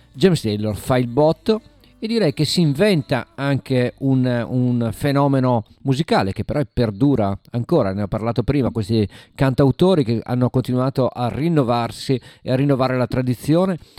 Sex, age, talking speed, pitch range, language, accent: male, 50-69, 150 wpm, 115-150 Hz, Italian, native